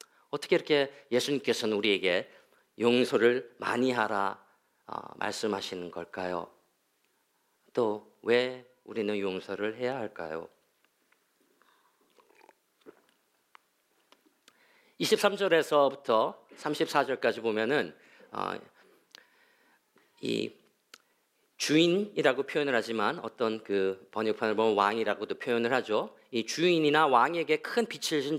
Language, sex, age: Korean, male, 40-59